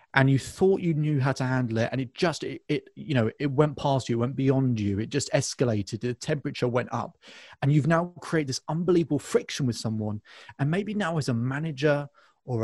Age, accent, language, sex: 30-49, British, English, male